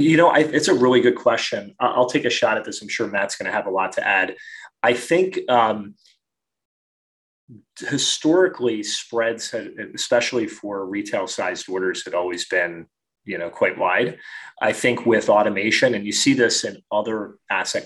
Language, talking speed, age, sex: English, 170 wpm, 30-49, male